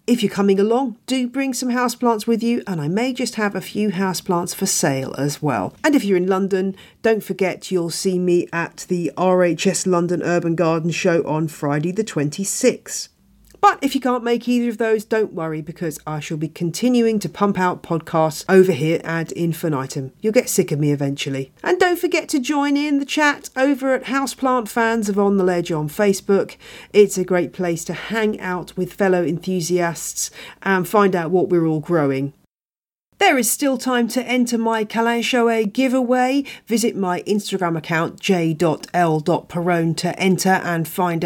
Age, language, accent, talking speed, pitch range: 40-59, English, British, 180 wpm, 165-230 Hz